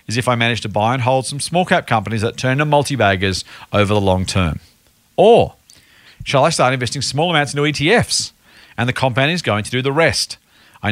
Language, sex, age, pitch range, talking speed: English, male, 40-59, 105-145 Hz, 210 wpm